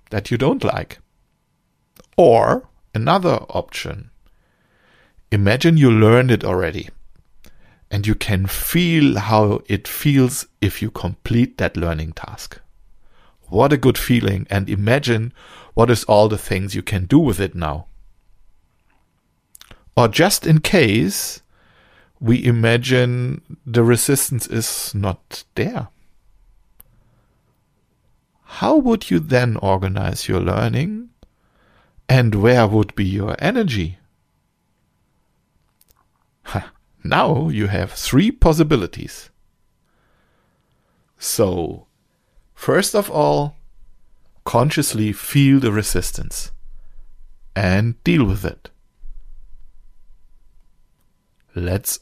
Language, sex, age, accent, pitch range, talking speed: English, male, 50-69, German, 95-125 Hz, 95 wpm